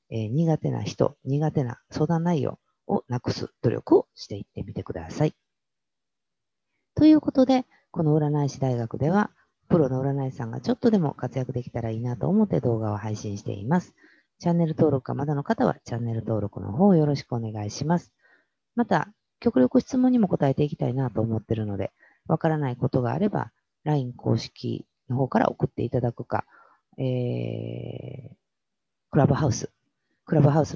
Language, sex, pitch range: Japanese, female, 115-175 Hz